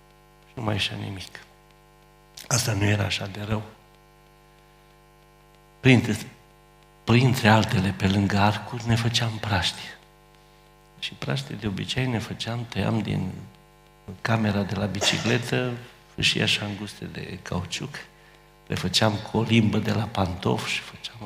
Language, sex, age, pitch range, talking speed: Romanian, male, 50-69, 105-175 Hz, 130 wpm